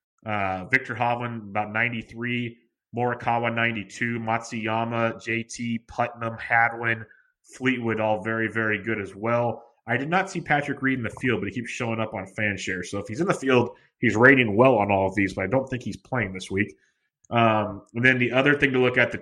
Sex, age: male, 30-49